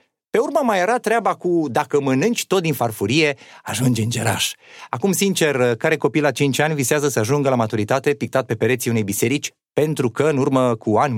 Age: 30-49